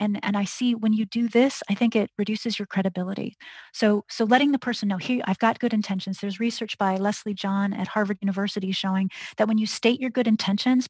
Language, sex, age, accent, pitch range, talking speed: English, female, 30-49, American, 200-235 Hz, 225 wpm